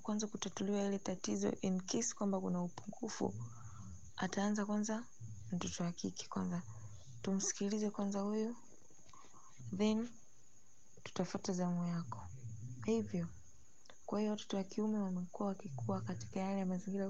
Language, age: Swahili, 20-39